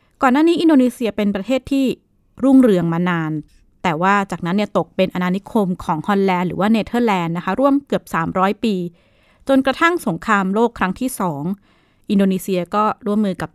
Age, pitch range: 20-39, 180-230 Hz